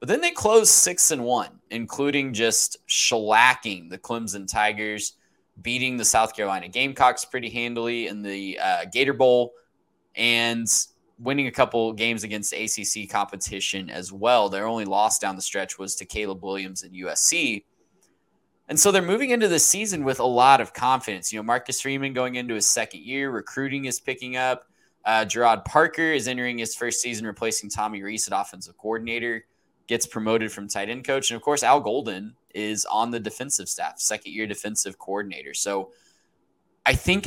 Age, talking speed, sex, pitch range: 20-39, 175 wpm, male, 105-125 Hz